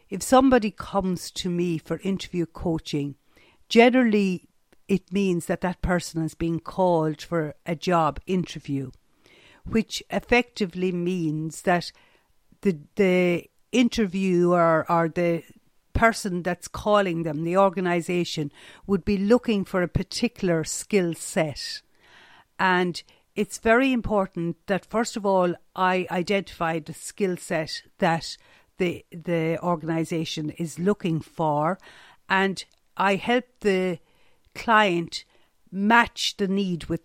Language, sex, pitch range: English, female, 165-200 Hz